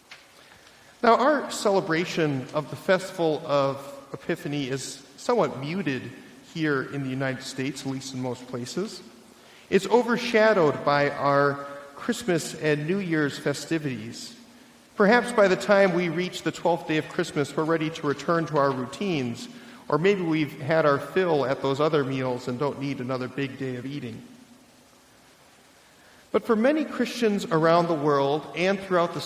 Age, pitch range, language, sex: 40-59, 140-195 Hz, English, male